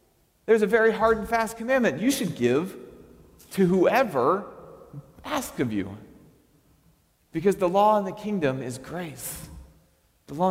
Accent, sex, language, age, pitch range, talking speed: American, male, English, 40-59, 130-180 Hz, 145 wpm